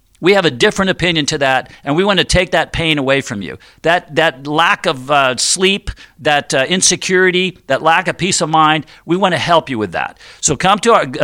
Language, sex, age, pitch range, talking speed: English, male, 50-69, 150-185 Hz, 230 wpm